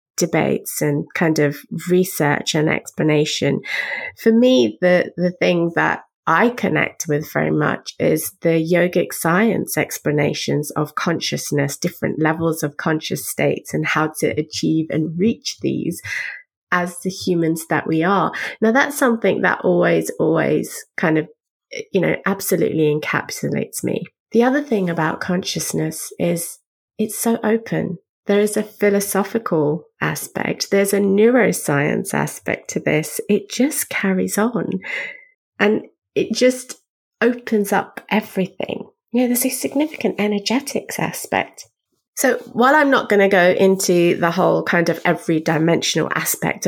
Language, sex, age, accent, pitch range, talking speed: English, female, 30-49, British, 160-225 Hz, 135 wpm